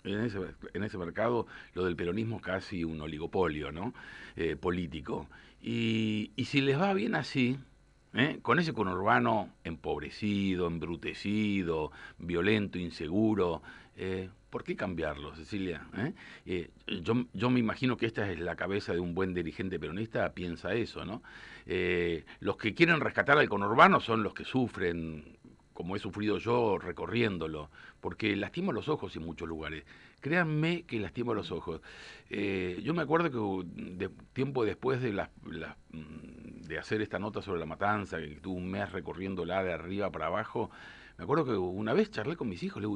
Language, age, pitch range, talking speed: Spanish, 50-69, 85-130 Hz, 170 wpm